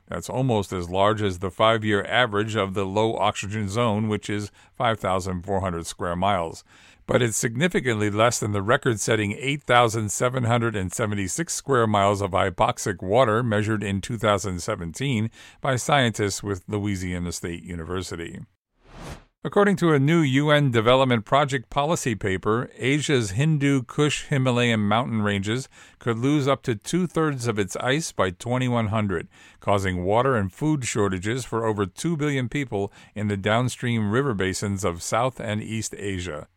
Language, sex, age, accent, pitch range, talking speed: English, male, 50-69, American, 100-135 Hz, 140 wpm